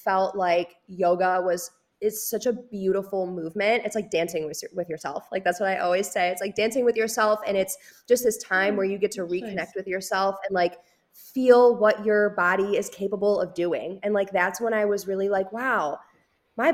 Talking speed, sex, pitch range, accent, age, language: 210 wpm, female, 170-210 Hz, American, 20-39, English